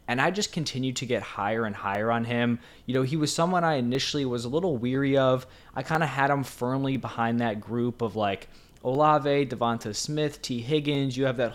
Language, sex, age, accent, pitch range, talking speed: English, male, 20-39, American, 115-135 Hz, 220 wpm